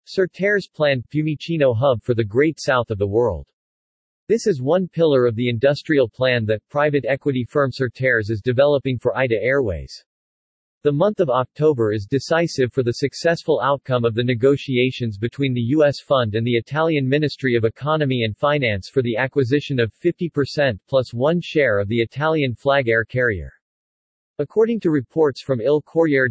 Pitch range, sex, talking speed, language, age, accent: 120-150 Hz, male, 170 wpm, English, 40-59, American